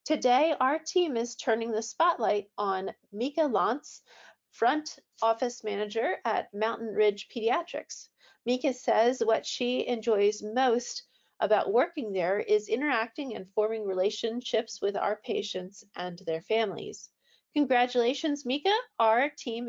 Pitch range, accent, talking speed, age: 205-255 Hz, American, 125 wpm, 40-59